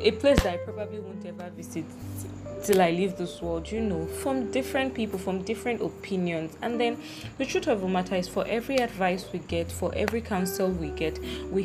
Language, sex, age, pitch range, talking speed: English, female, 20-39, 160-205 Hz, 205 wpm